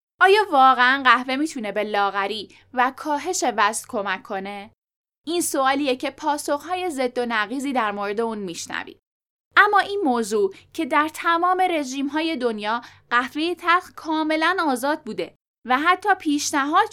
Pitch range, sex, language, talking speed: 230-340 Hz, female, Persian, 135 wpm